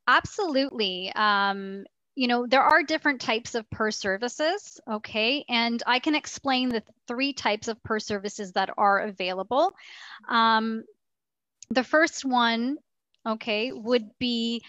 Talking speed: 130 wpm